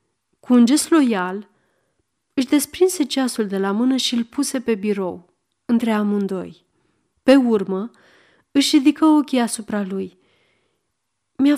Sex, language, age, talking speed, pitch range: female, Romanian, 30-49, 130 wpm, 200-270 Hz